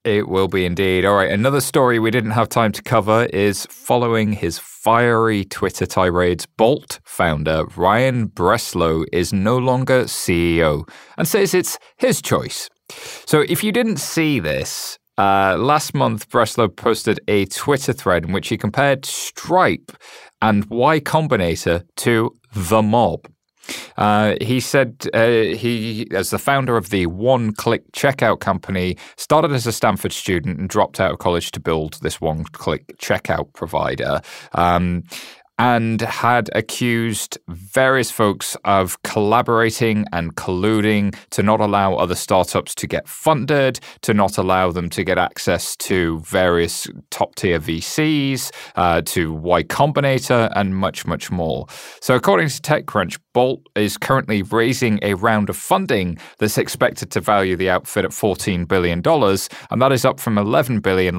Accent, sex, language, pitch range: British, male, English, 95-120 Hz